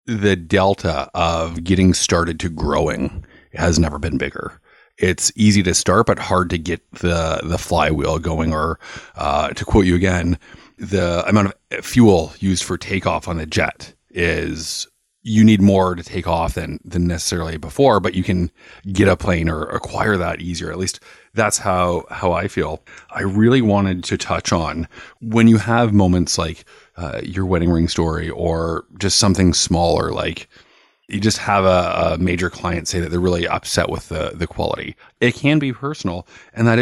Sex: male